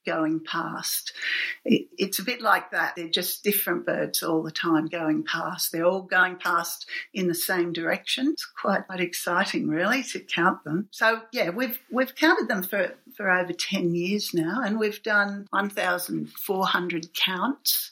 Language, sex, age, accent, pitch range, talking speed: English, female, 50-69, Australian, 165-200 Hz, 170 wpm